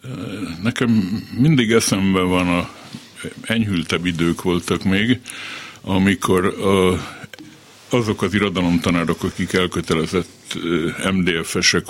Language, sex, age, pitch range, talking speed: Hungarian, male, 60-79, 85-100 Hz, 75 wpm